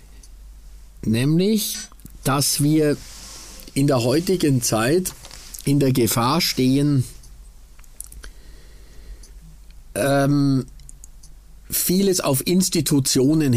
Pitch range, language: 130-155 Hz, German